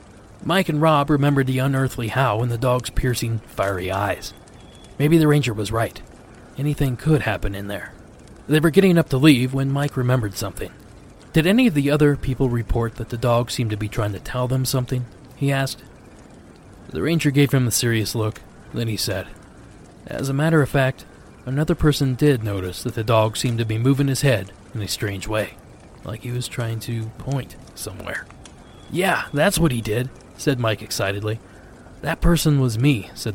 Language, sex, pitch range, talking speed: English, male, 110-145 Hz, 190 wpm